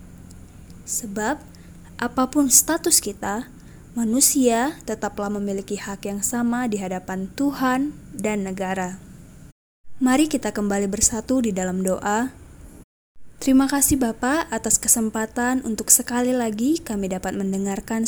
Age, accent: 20-39, native